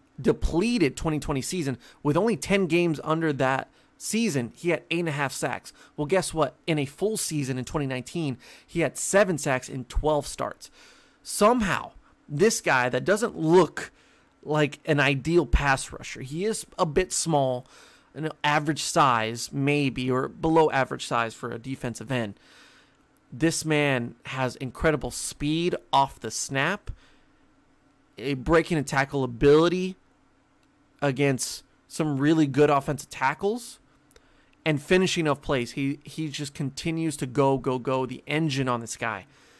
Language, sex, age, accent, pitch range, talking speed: English, male, 30-49, American, 130-160 Hz, 145 wpm